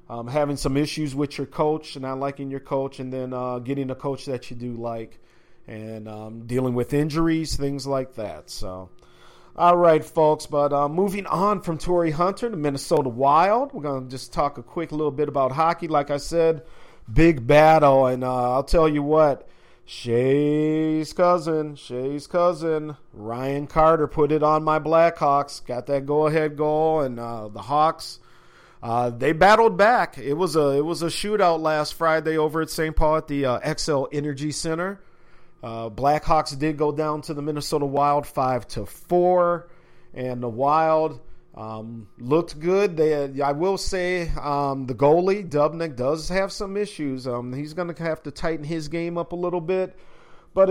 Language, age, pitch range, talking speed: English, 40-59, 135-165 Hz, 180 wpm